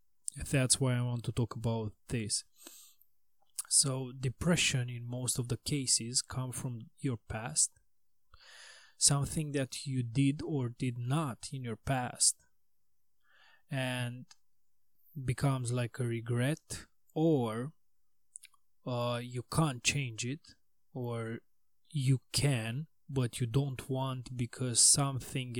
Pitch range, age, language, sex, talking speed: 120-135 Hz, 20-39, English, male, 115 wpm